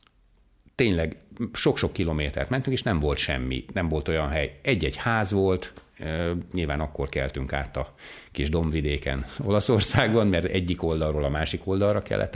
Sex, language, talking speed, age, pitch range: male, Hungarian, 145 wpm, 60-79, 70-90 Hz